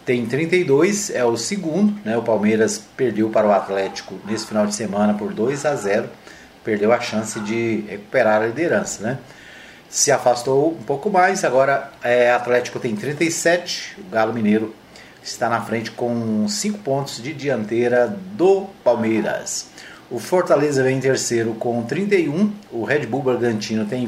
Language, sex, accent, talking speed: Portuguese, male, Brazilian, 160 wpm